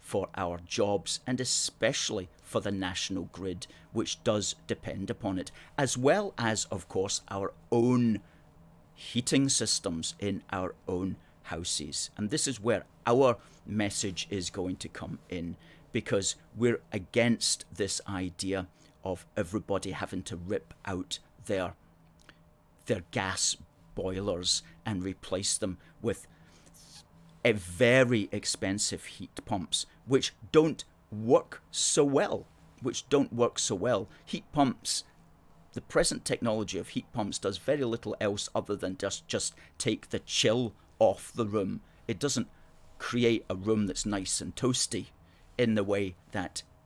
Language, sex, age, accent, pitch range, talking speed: English, male, 40-59, British, 90-115 Hz, 135 wpm